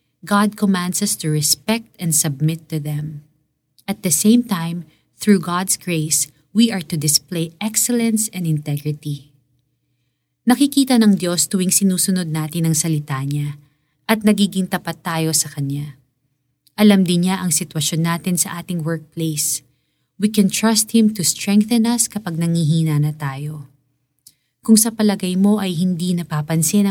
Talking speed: 145 wpm